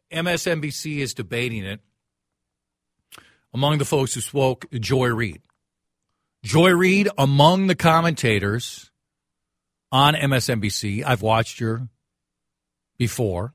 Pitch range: 100-140 Hz